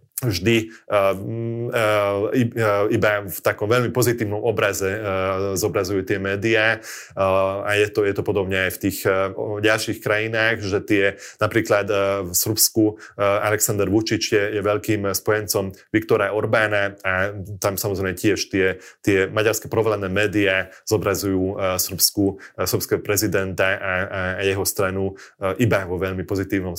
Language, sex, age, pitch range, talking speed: Slovak, male, 30-49, 100-115 Hz, 145 wpm